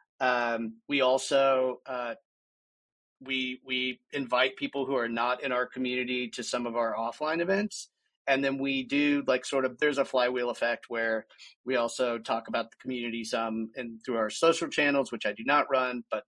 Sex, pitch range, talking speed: male, 120-135 Hz, 185 wpm